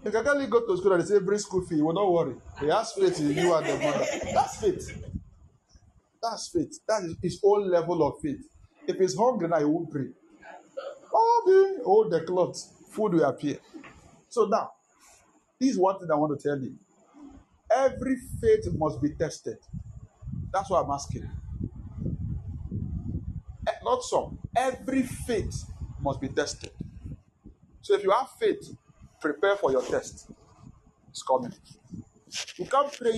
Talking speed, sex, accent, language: 155 wpm, male, Nigerian, English